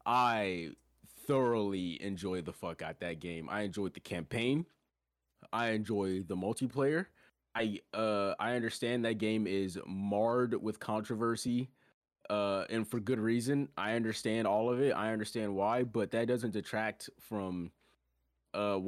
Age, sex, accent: 20-39, male, American